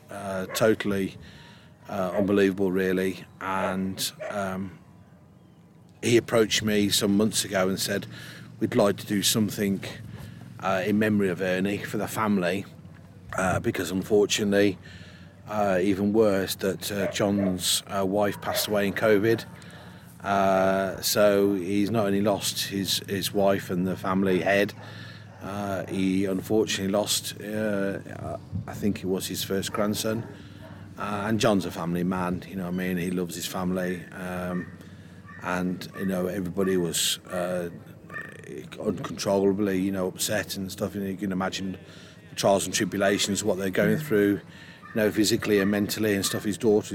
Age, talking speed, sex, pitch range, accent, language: 30-49, 150 wpm, male, 95-105 Hz, British, English